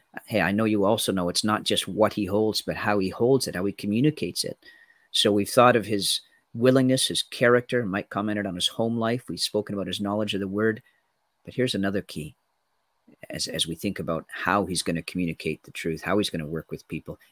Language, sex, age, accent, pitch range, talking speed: English, male, 40-59, American, 100-130 Hz, 230 wpm